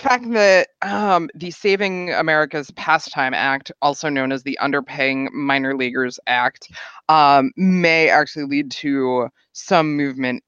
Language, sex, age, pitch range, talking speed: English, female, 20-39, 125-155 Hz, 140 wpm